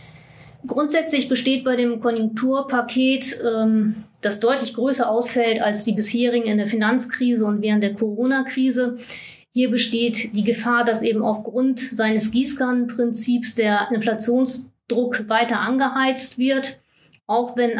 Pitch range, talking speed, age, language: 220-255 Hz, 120 wpm, 30-49, German